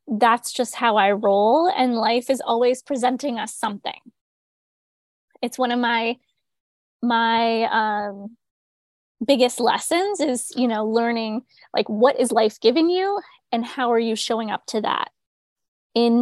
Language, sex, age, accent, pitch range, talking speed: English, female, 10-29, American, 215-265 Hz, 145 wpm